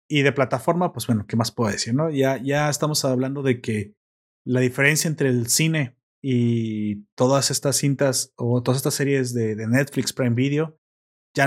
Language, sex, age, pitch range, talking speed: Spanish, male, 30-49, 120-150 Hz, 185 wpm